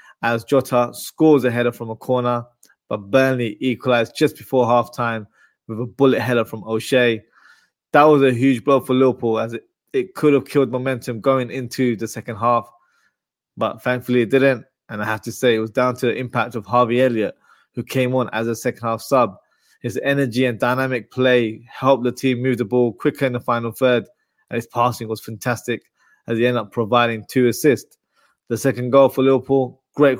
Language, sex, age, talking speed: English, male, 20-39, 195 wpm